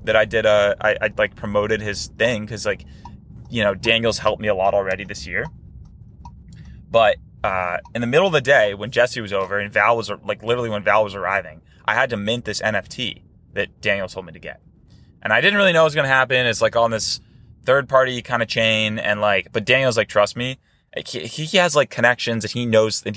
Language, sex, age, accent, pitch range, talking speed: English, male, 20-39, American, 100-120 Hz, 230 wpm